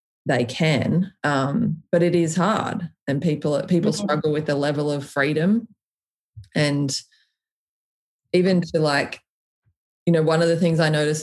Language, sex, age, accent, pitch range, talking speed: English, female, 20-39, Australian, 150-180 Hz, 150 wpm